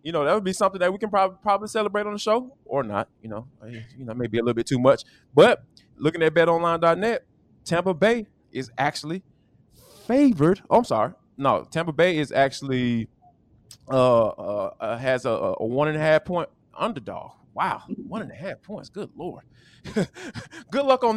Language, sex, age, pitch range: English, male, 20-39, 140-215 Hz